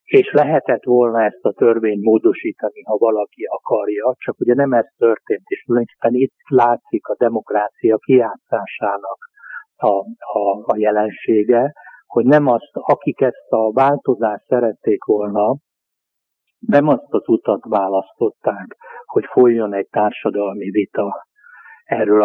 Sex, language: male, Hungarian